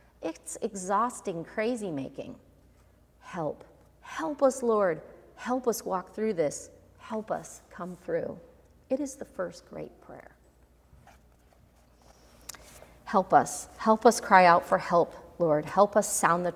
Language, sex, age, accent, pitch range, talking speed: English, female, 40-59, American, 165-225 Hz, 125 wpm